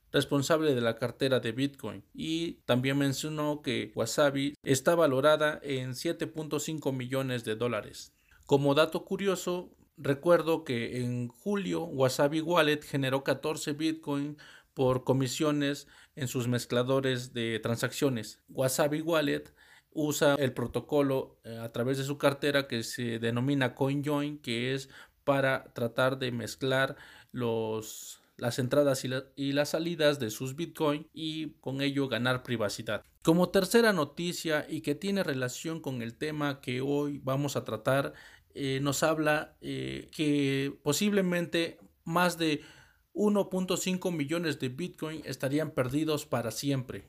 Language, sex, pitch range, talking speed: Spanish, male, 130-155 Hz, 135 wpm